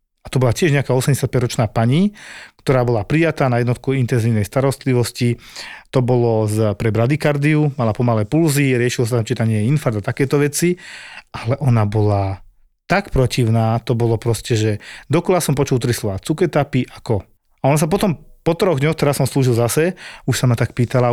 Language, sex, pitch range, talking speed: Slovak, male, 115-140 Hz, 175 wpm